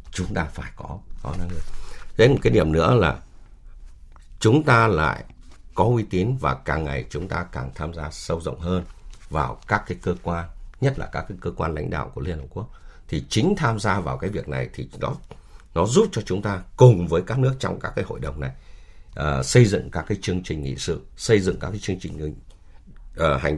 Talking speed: 225 wpm